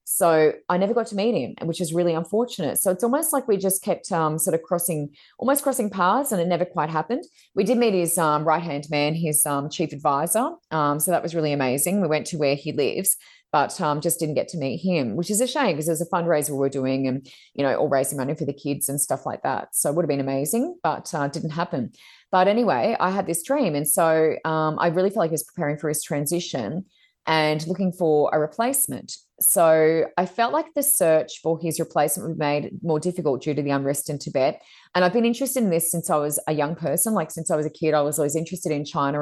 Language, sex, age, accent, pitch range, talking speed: English, female, 30-49, Australian, 150-190 Hz, 250 wpm